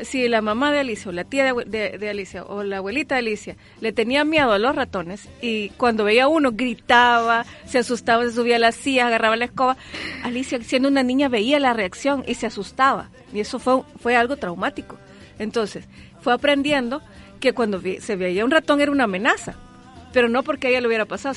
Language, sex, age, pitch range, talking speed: Spanish, female, 40-59, 210-255 Hz, 210 wpm